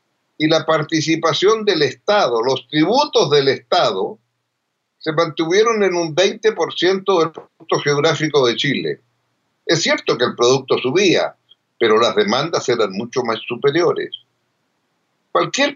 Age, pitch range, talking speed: 60-79, 155-205 Hz, 125 wpm